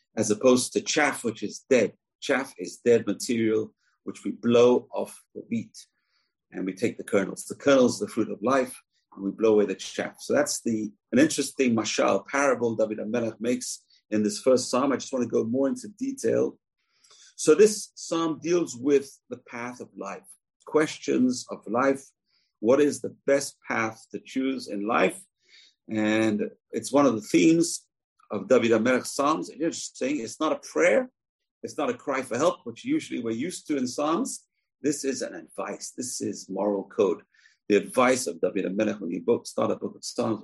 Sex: male